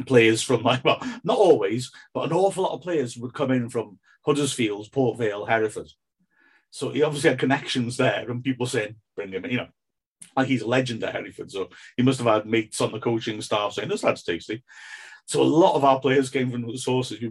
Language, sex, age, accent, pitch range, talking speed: English, male, 50-69, British, 120-140 Hz, 220 wpm